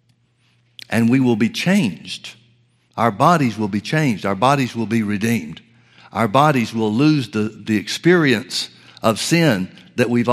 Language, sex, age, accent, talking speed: English, male, 60-79, American, 150 wpm